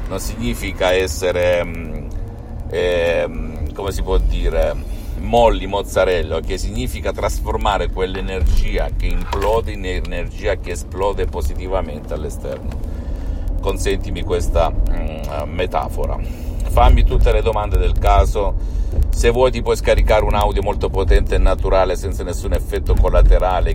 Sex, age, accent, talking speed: male, 50-69, native, 120 wpm